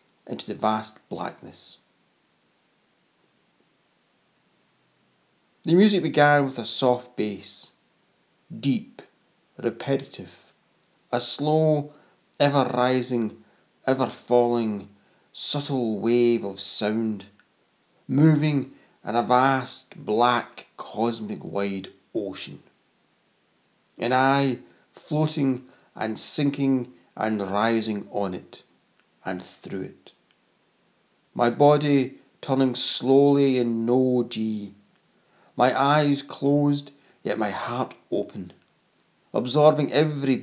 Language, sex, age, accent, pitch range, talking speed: English, male, 40-59, British, 115-140 Hz, 85 wpm